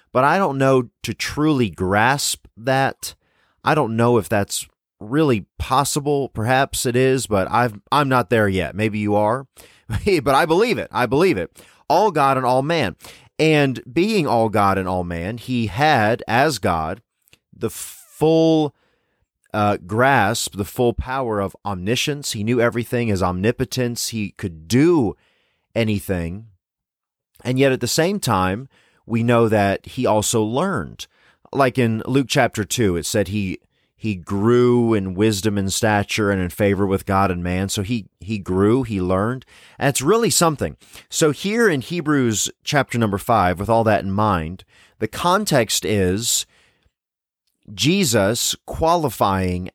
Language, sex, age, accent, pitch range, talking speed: English, male, 30-49, American, 100-130 Hz, 150 wpm